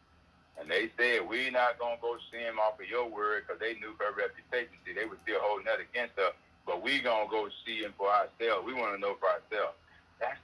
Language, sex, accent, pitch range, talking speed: English, male, American, 110-120 Hz, 245 wpm